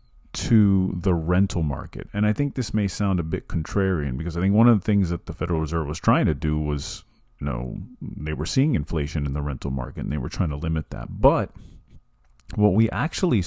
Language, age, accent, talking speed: English, 40-59, American, 225 wpm